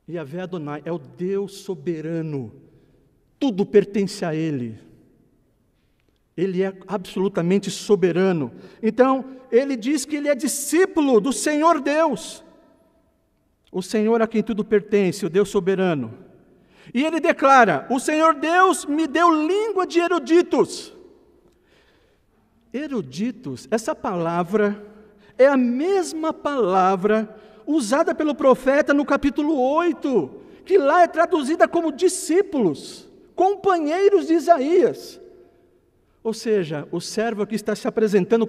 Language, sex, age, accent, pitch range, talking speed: Portuguese, male, 50-69, Brazilian, 195-310 Hz, 115 wpm